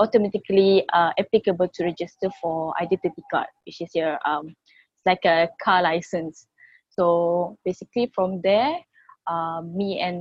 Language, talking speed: English, 135 wpm